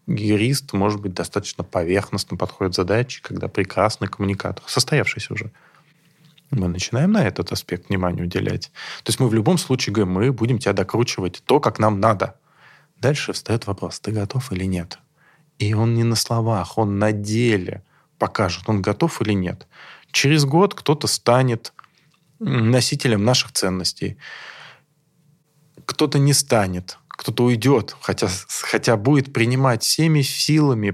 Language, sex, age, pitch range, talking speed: Russian, male, 20-39, 105-140 Hz, 140 wpm